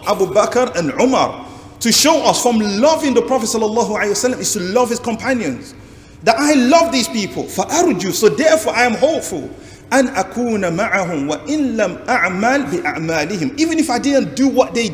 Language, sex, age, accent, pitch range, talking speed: English, male, 40-59, Nigerian, 185-265 Hz, 135 wpm